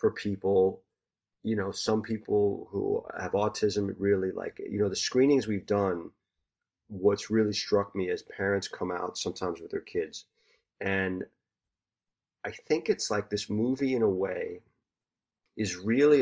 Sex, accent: male, American